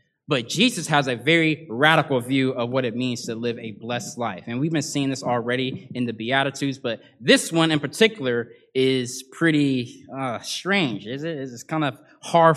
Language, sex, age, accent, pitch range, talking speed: English, male, 20-39, American, 125-180 Hz, 190 wpm